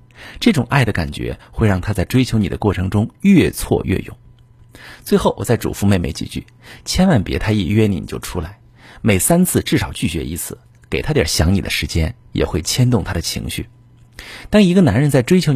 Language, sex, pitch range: Chinese, male, 90-120 Hz